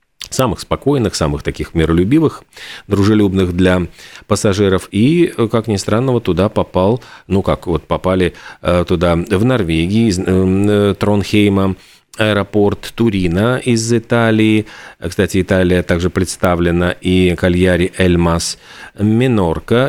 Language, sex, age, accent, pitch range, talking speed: Russian, male, 40-59, native, 90-115 Hz, 115 wpm